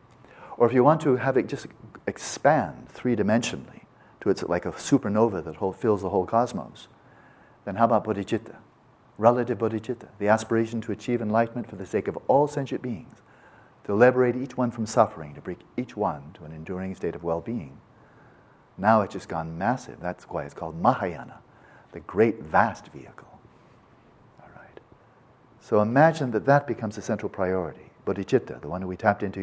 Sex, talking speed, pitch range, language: male, 170 wpm, 100-125 Hz, English